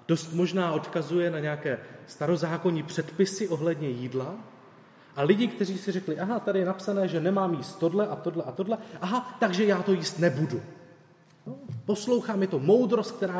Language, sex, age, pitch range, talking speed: Czech, male, 30-49, 145-195 Hz, 170 wpm